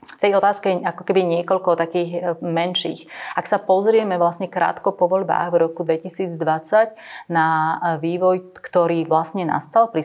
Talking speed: 135 wpm